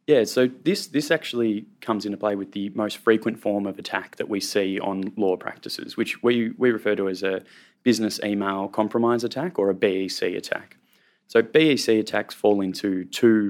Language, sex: English, male